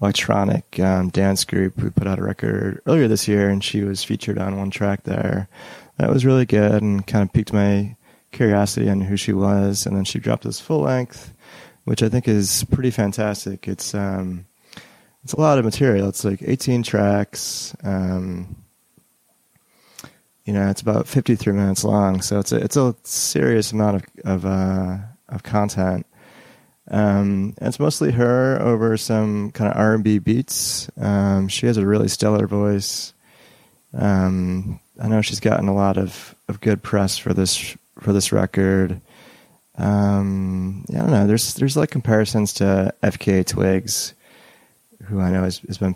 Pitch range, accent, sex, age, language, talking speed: 95-110 Hz, American, male, 30-49, English, 170 wpm